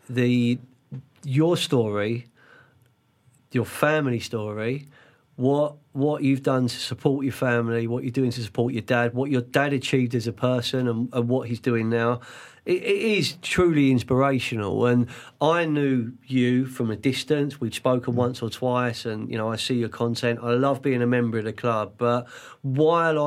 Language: English